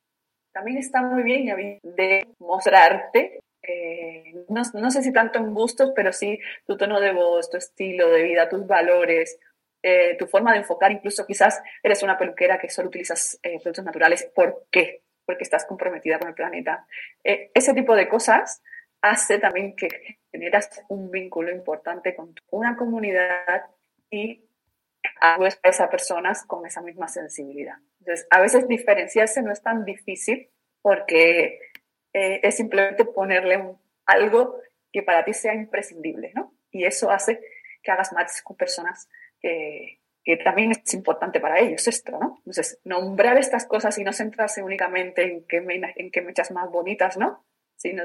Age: 30-49